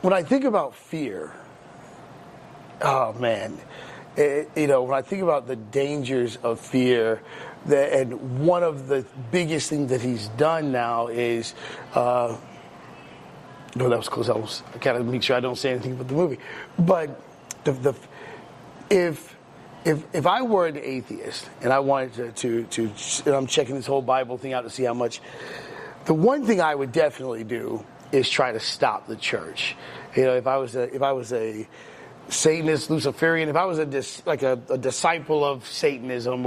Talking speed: 190 wpm